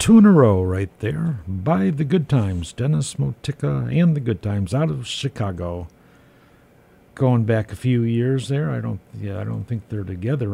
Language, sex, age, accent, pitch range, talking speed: English, male, 60-79, American, 100-135 Hz, 190 wpm